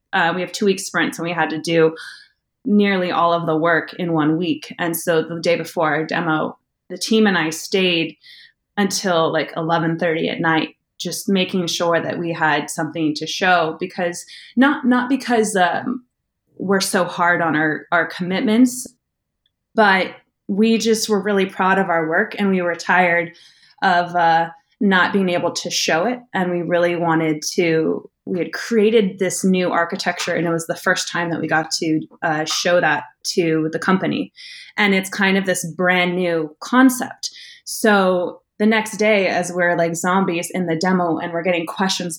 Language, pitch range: English, 165-195 Hz